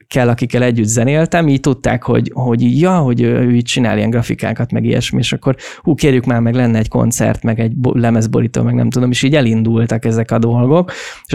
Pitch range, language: 115-135 Hz, Hungarian